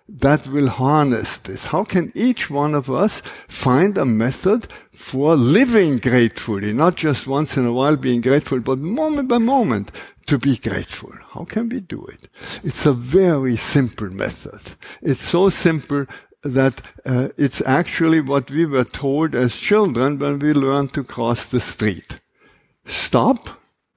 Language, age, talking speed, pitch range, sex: English, 60-79, 155 wpm, 125-165 Hz, male